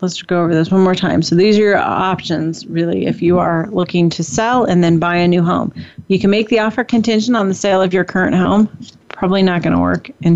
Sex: female